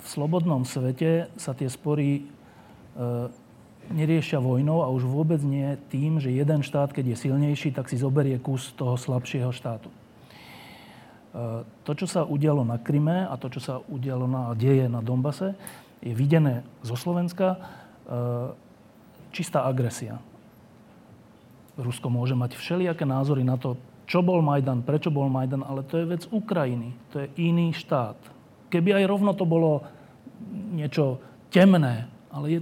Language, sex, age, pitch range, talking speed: Slovak, male, 40-59, 125-165 Hz, 150 wpm